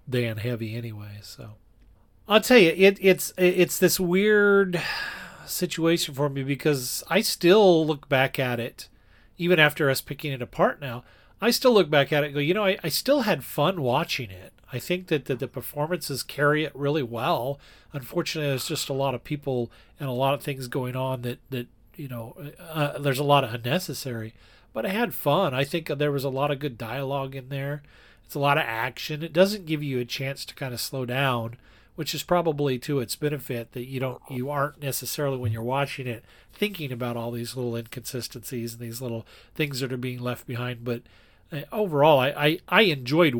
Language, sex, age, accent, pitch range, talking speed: English, male, 40-59, American, 120-155 Hz, 205 wpm